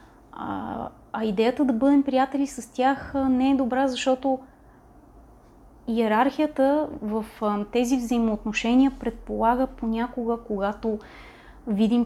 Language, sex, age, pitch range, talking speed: Bulgarian, female, 20-39, 225-255 Hz, 95 wpm